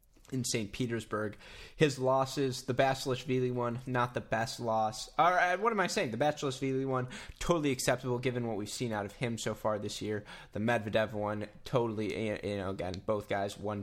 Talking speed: 185 wpm